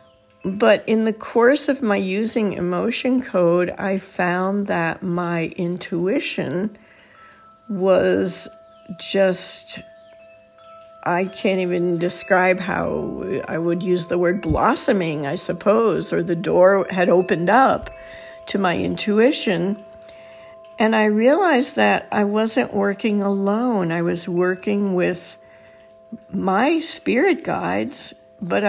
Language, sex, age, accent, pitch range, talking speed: English, female, 60-79, American, 175-220 Hz, 115 wpm